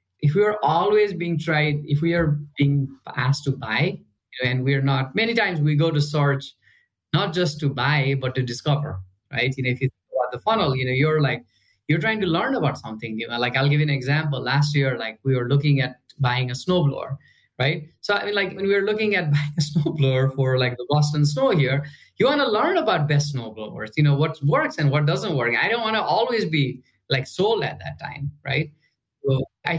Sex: male